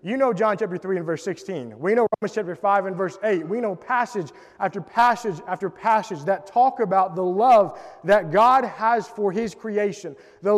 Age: 20-39